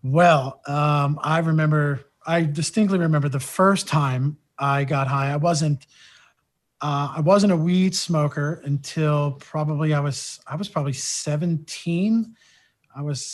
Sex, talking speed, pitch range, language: male, 140 wpm, 135-170 Hz, English